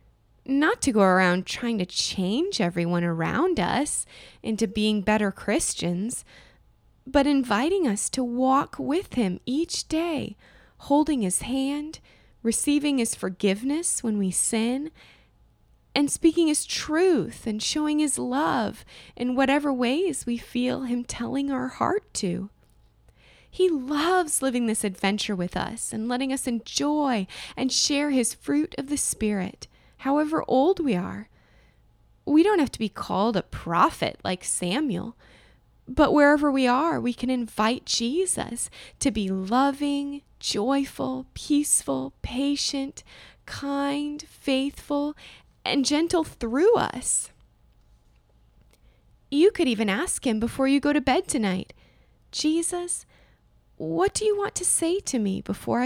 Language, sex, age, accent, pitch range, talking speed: English, female, 20-39, American, 230-300 Hz, 130 wpm